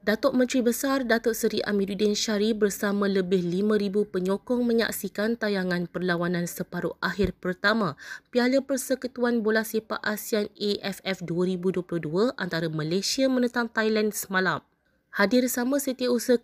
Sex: female